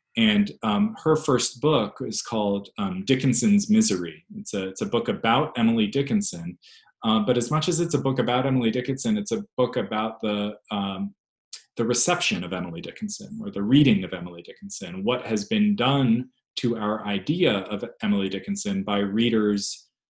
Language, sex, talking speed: English, male, 165 wpm